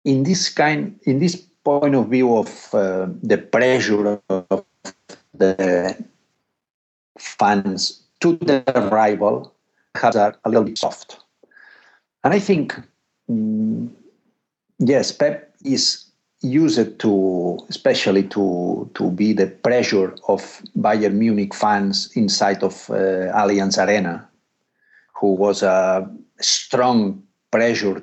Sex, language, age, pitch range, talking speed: male, English, 50-69, 95-165 Hz, 115 wpm